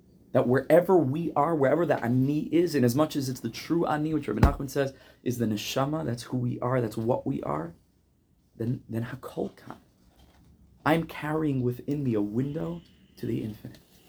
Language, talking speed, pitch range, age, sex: English, 185 wpm, 115-155 Hz, 30-49, male